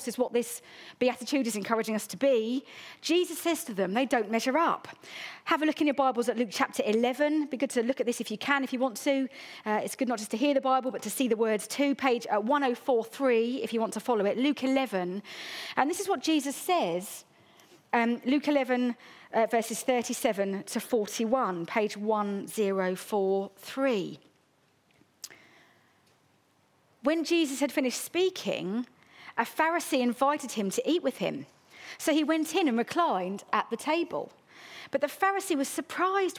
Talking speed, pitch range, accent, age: 180 wpm, 225-300 Hz, British, 40-59